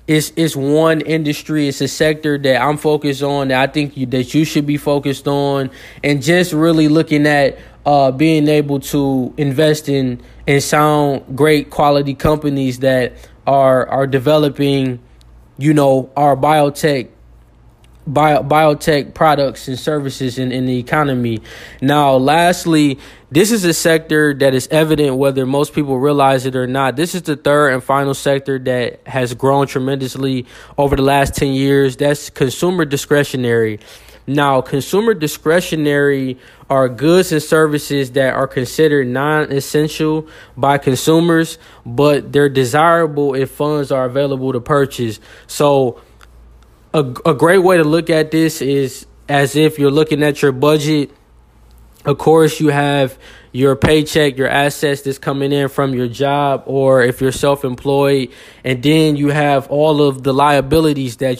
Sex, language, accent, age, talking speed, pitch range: male, English, American, 20-39, 150 wpm, 135-150 Hz